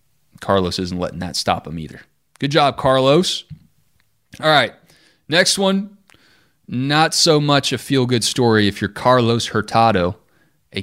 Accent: American